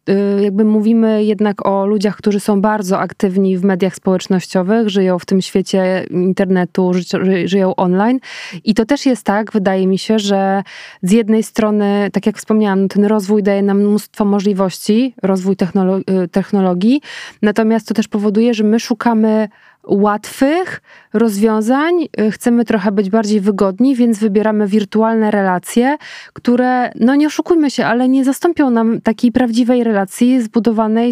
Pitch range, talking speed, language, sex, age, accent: 200-230 Hz, 140 wpm, Polish, female, 20-39, native